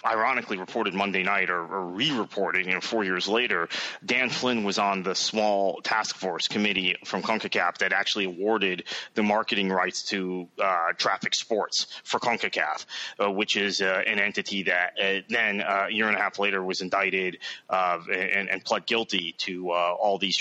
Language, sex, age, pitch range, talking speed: English, male, 30-49, 95-110 Hz, 180 wpm